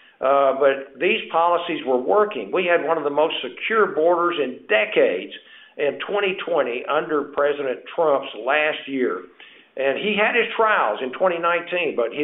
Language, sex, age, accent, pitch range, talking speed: English, male, 60-79, American, 145-185 Hz, 150 wpm